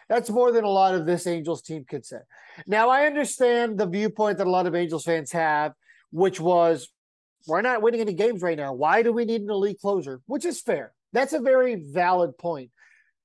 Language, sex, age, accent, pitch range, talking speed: English, male, 30-49, American, 170-225 Hz, 215 wpm